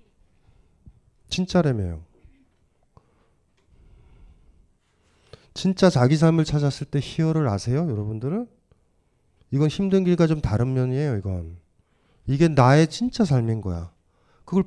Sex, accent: male, native